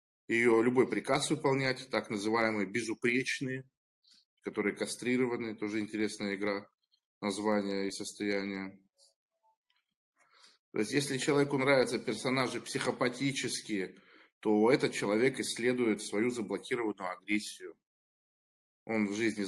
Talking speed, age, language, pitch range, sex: 100 wpm, 20-39, Russian, 105-135 Hz, male